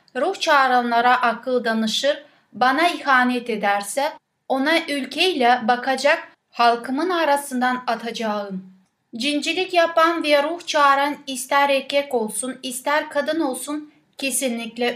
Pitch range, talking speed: 235-295 Hz, 100 wpm